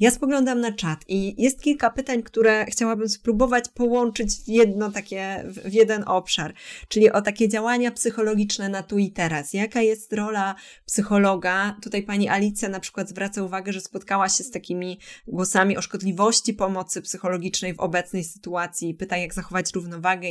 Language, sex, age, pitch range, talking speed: Polish, female, 20-39, 180-210 Hz, 165 wpm